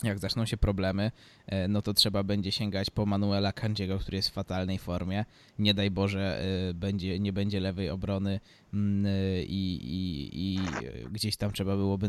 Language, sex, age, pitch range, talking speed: Polish, male, 20-39, 95-105 Hz, 160 wpm